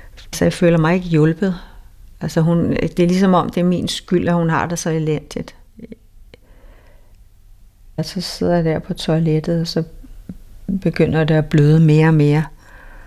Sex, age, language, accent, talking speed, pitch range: female, 60-79, Danish, native, 165 wpm, 100-165 Hz